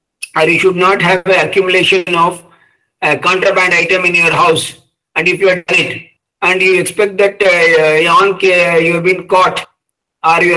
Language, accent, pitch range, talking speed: English, Indian, 160-200 Hz, 185 wpm